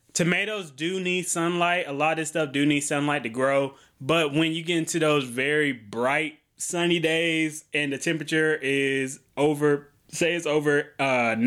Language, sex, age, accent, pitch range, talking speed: English, male, 20-39, American, 140-170 Hz, 175 wpm